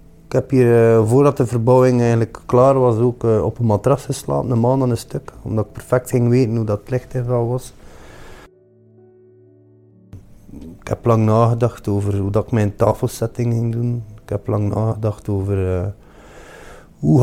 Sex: male